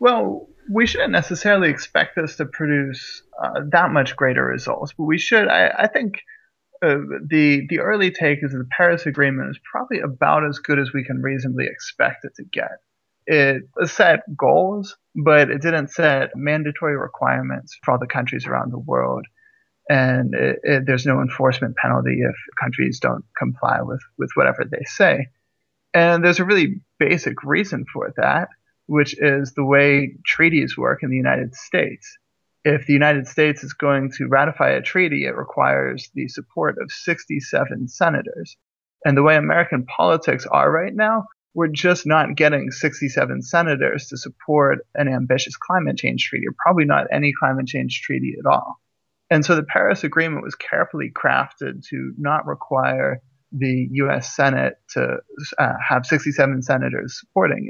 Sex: male